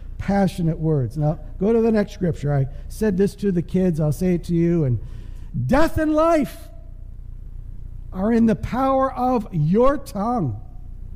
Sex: male